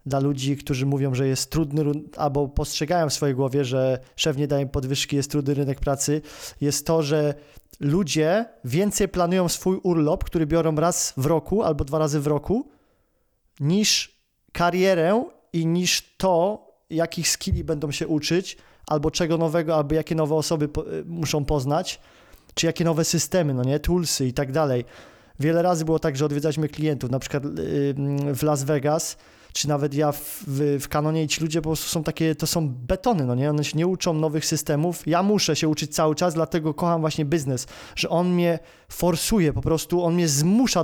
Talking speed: 180 wpm